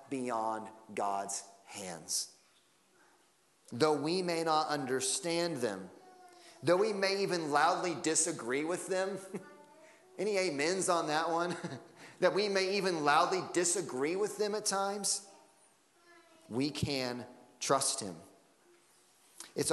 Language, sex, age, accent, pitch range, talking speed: English, male, 30-49, American, 130-185 Hz, 115 wpm